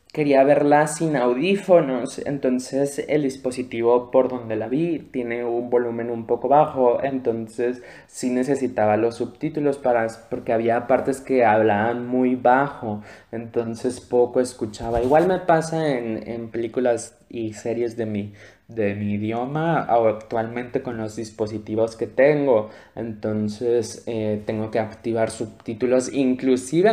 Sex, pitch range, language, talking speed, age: male, 110-140 Hz, Spanish, 125 wpm, 20-39